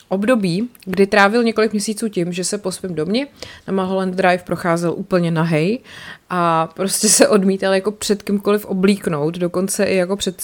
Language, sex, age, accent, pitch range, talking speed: Czech, female, 20-39, native, 165-205 Hz, 165 wpm